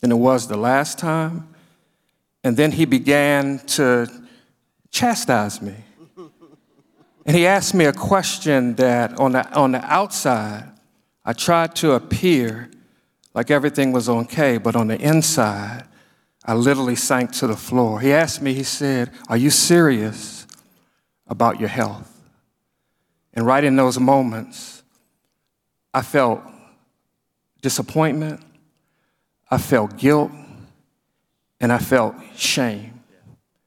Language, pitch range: English, 120-160 Hz